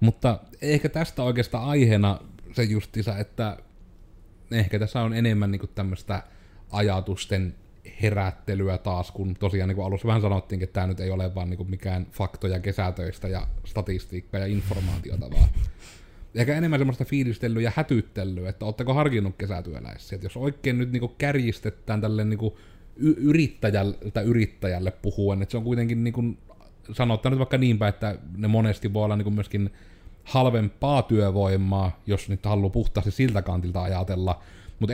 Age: 30-49